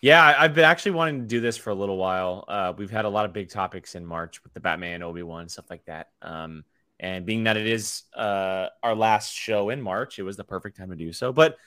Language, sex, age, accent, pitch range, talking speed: English, male, 20-39, American, 95-135 Hz, 255 wpm